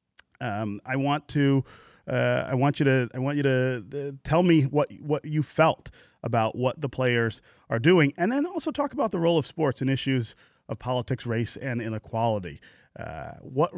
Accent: American